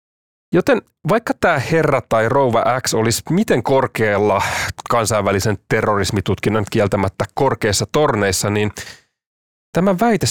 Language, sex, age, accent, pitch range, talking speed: English, male, 30-49, Finnish, 100-135 Hz, 105 wpm